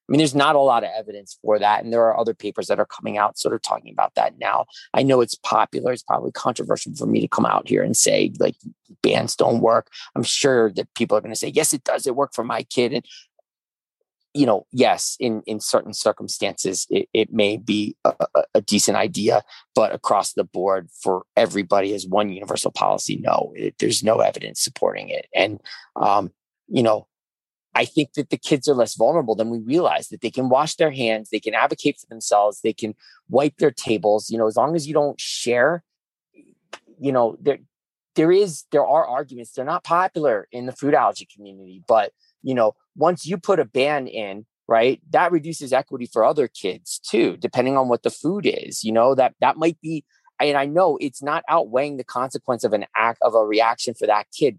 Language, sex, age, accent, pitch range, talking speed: English, male, 30-49, American, 110-150 Hz, 215 wpm